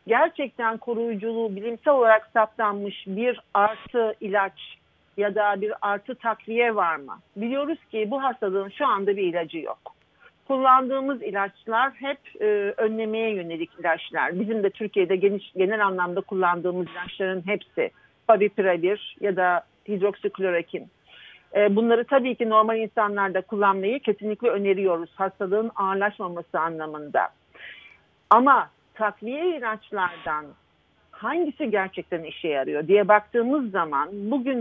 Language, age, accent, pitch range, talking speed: Turkish, 50-69, native, 190-235 Hz, 115 wpm